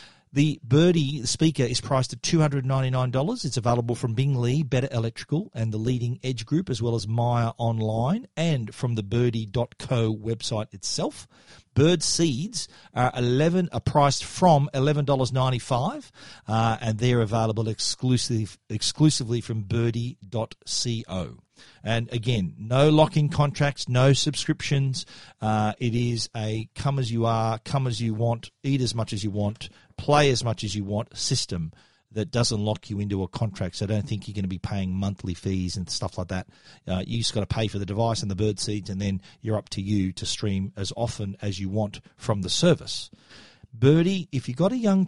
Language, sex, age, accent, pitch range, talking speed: English, male, 40-59, Australian, 110-140 Hz, 160 wpm